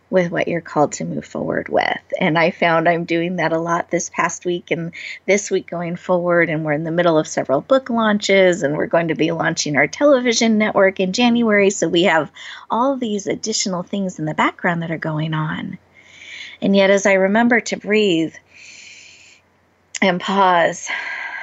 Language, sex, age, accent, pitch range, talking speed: English, female, 30-49, American, 165-200 Hz, 190 wpm